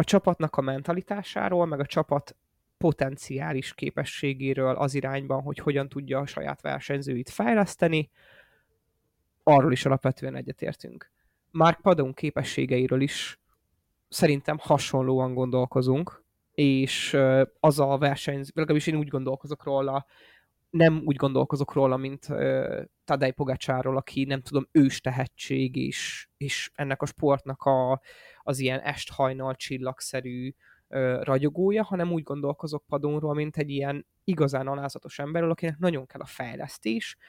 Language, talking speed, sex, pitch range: Hungarian, 125 wpm, male, 130-155 Hz